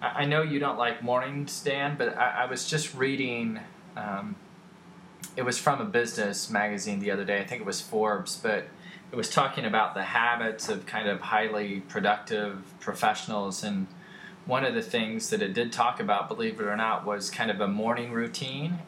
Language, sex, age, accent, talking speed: English, male, 20-39, American, 195 wpm